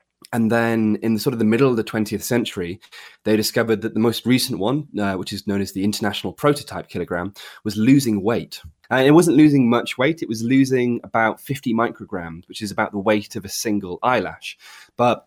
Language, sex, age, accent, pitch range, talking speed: English, male, 20-39, British, 100-120 Hz, 205 wpm